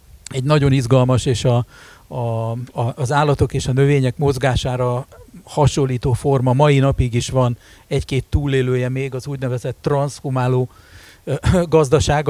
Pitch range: 120-140 Hz